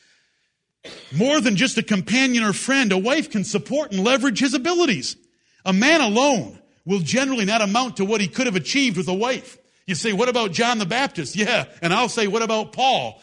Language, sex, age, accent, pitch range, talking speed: English, male, 50-69, American, 185-255 Hz, 205 wpm